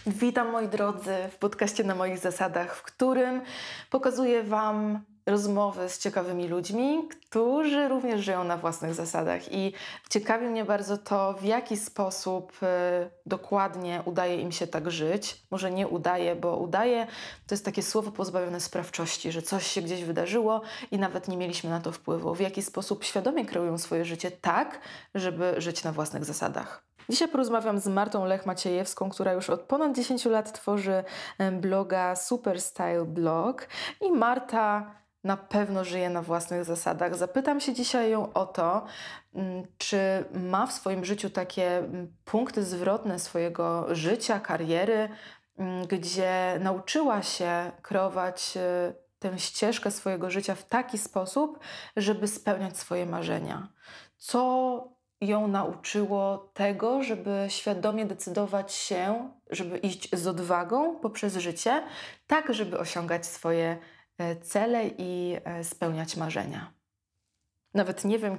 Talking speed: 135 wpm